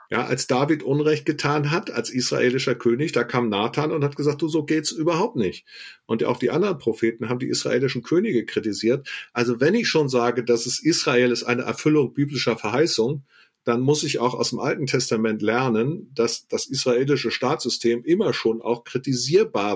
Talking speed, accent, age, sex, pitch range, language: 180 wpm, German, 40-59, male, 115-140 Hz, German